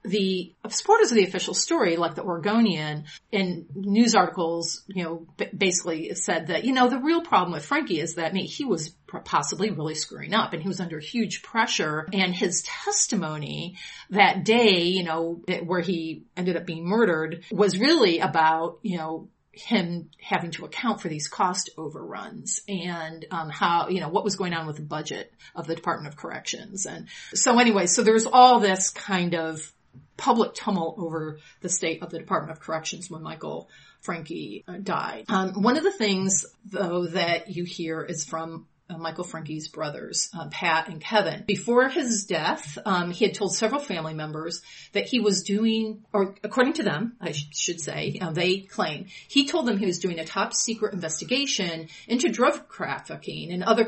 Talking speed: 185 wpm